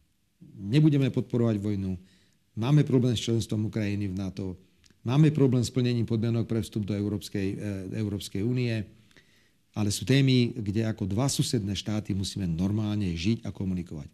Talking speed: 145 wpm